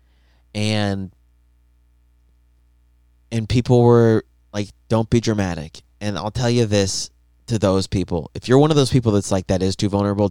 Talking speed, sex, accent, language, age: 165 wpm, male, American, English, 30-49